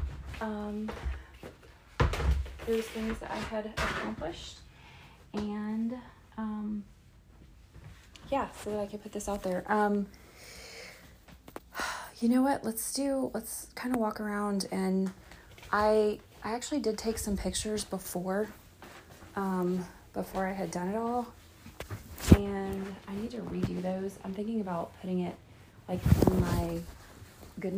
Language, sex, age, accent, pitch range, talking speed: English, female, 30-49, American, 160-210 Hz, 130 wpm